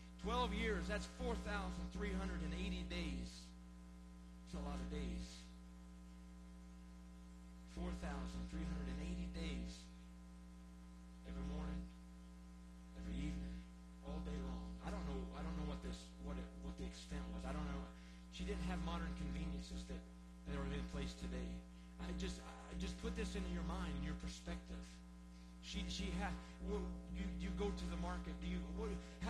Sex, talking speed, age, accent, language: male, 170 wpm, 40-59, American, English